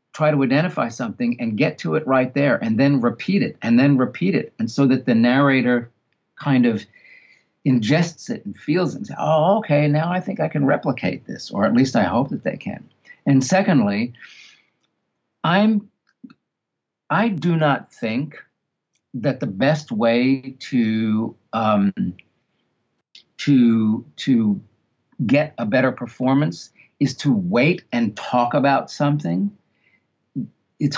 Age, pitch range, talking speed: 50-69, 125-170 Hz, 145 wpm